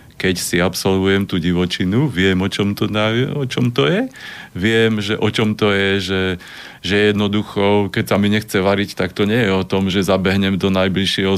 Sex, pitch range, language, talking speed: male, 95-115 Hz, Slovak, 200 wpm